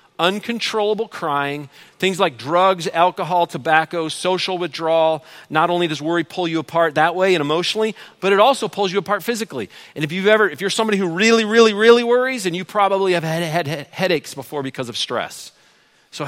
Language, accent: English, American